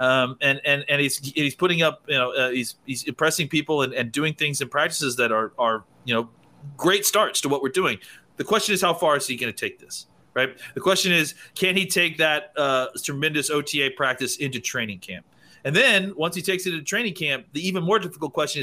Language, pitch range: English, 130-165 Hz